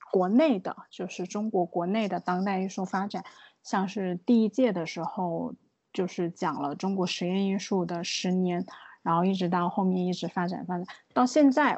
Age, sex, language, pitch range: 20-39, female, Chinese, 180-220 Hz